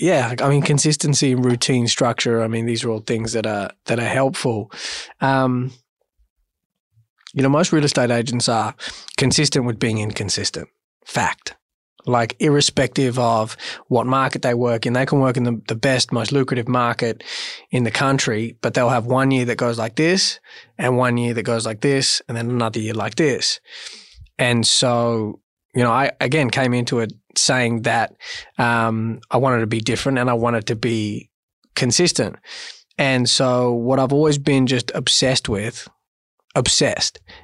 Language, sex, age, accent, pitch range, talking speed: English, male, 20-39, Australian, 115-135 Hz, 170 wpm